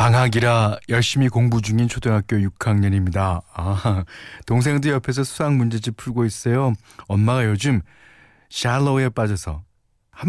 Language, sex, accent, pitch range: Korean, male, native, 95-130 Hz